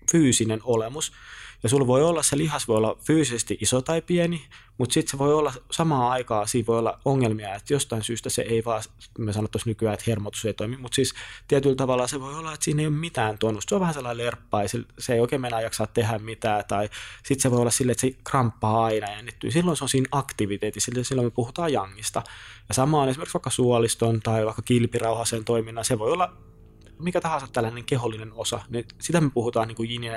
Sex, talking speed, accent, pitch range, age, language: male, 215 wpm, native, 110-130 Hz, 20-39, Finnish